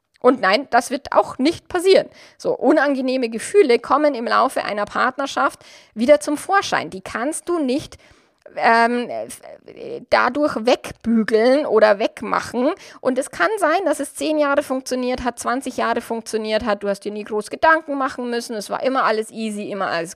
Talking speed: 170 wpm